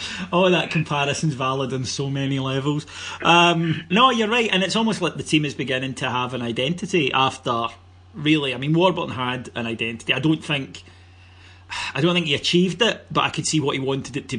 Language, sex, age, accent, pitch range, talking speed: English, male, 30-49, British, 120-150 Hz, 210 wpm